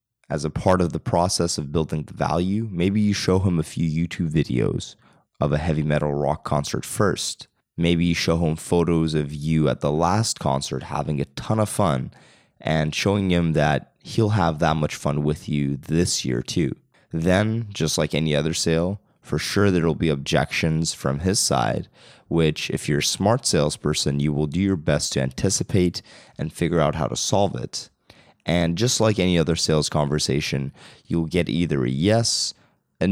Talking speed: 185 wpm